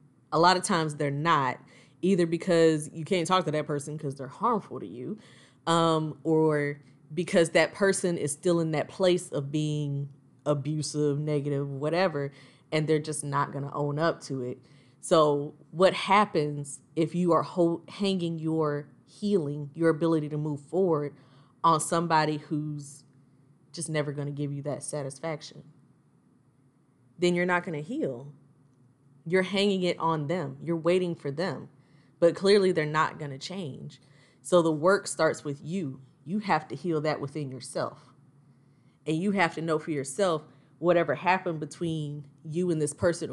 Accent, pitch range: American, 140-165 Hz